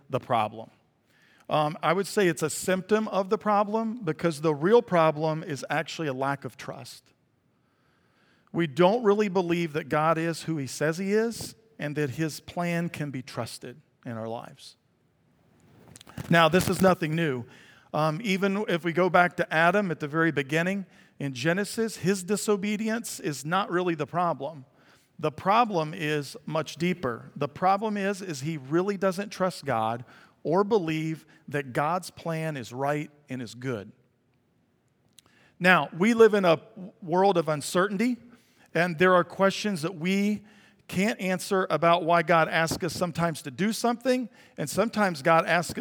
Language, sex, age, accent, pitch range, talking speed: English, male, 50-69, American, 150-195 Hz, 160 wpm